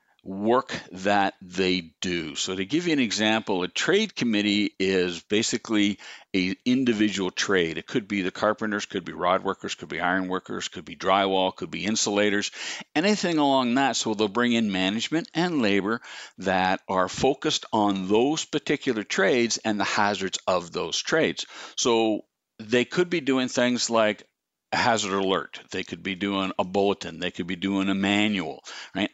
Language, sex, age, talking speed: English, male, 60-79, 170 wpm